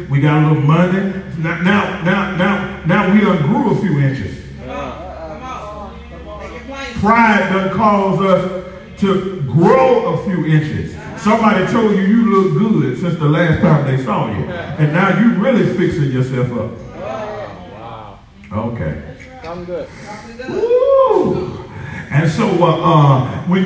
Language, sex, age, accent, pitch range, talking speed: English, male, 40-59, American, 135-195 Hz, 135 wpm